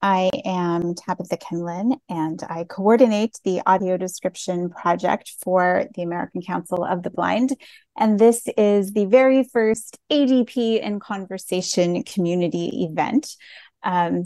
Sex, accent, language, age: female, American, English, 30-49